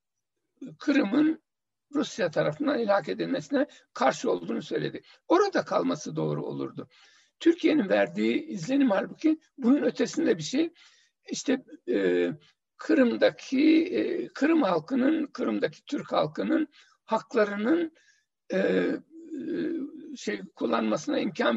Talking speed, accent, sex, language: 95 wpm, native, male, Turkish